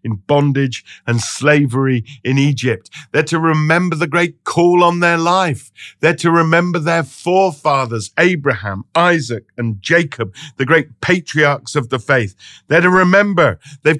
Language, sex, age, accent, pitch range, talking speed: English, male, 50-69, British, 125-170 Hz, 145 wpm